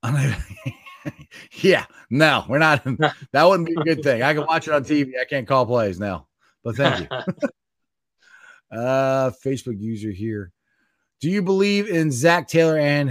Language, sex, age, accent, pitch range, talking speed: English, male, 30-49, American, 125-165 Hz, 160 wpm